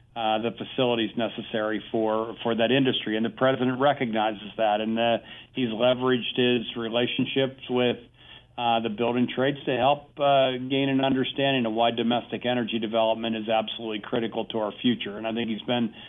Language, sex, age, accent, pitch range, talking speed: English, male, 50-69, American, 115-130 Hz, 170 wpm